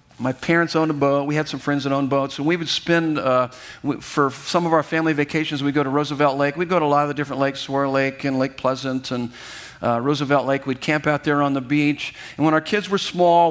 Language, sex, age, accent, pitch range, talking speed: English, male, 50-69, American, 140-175 Hz, 260 wpm